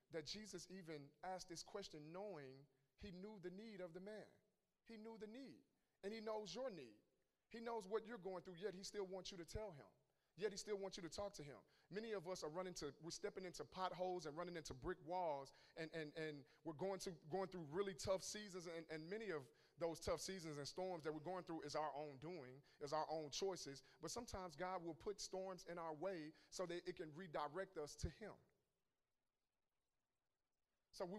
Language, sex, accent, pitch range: English, male, American, 160-195 Hz